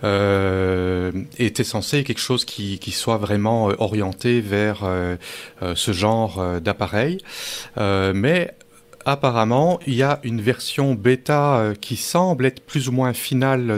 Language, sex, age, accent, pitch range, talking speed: French, male, 30-49, French, 100-130 Hz, 135 wpm